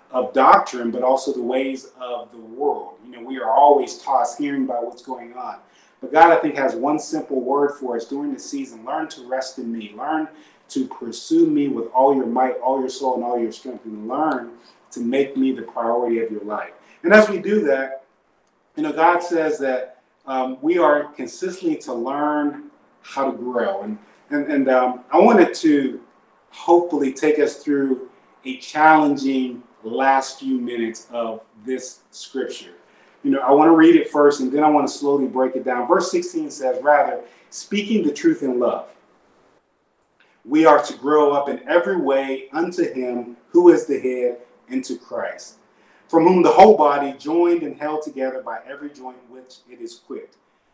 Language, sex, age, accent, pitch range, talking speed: English, male, 30-49, American, 130-165 Hz, 190 wpm